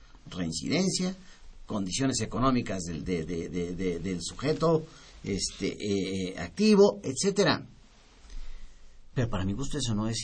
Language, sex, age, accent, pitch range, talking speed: Spanish, male, 40-59, Mexican, 95-155 Hz, 125 wpm